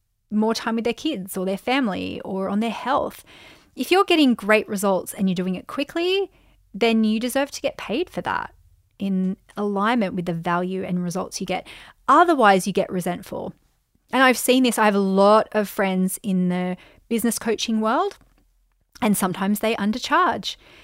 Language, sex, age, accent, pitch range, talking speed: English, female, 30-49, Australian, 195-255 Hz, 180 wpm